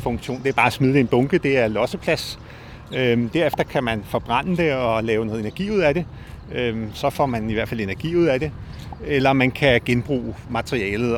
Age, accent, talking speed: 30-49, native, 215 wpm